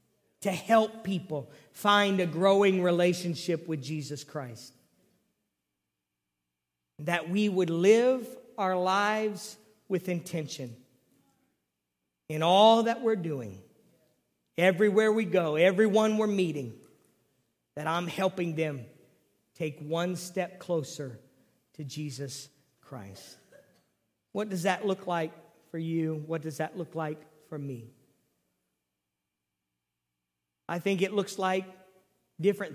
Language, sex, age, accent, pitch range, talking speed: English, male, 50-69, American, 150-200 Hz, 110 wpm